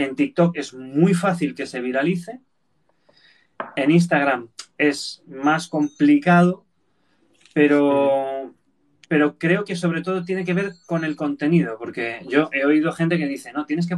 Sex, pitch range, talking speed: male, 135-170 Hz, 150 wpm